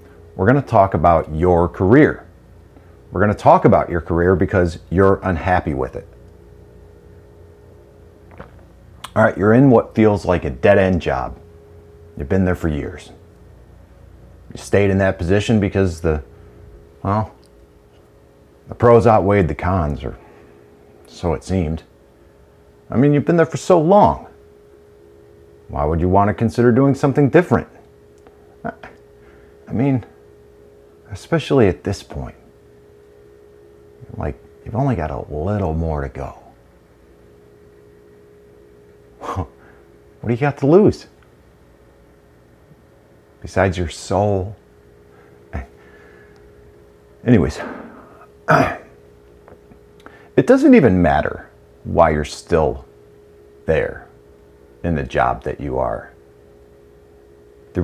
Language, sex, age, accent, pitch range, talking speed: English, male, 40-59, American, 70-95 Hz, 110 wpm